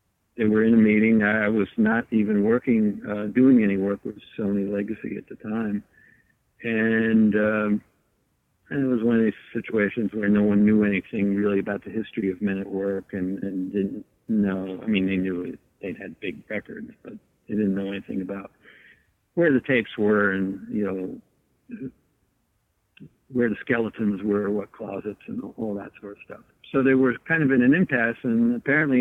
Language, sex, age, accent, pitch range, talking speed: English, male, 60-79, American, 100-120 Hz, 185 wpm